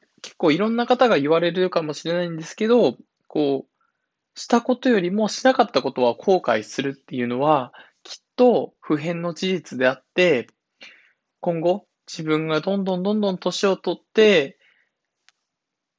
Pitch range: 155-205 Hz